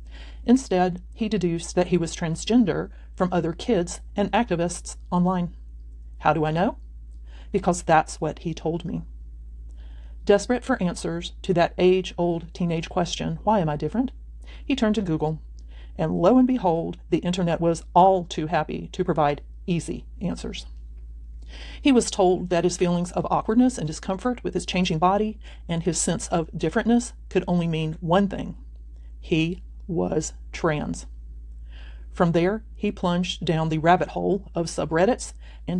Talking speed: 155 wpm